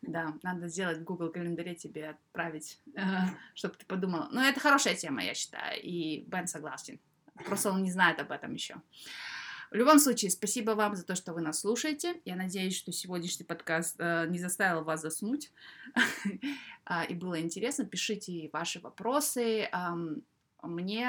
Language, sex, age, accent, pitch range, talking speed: Russian, female, 20-39, native, 170-215 Hz, 155 wpm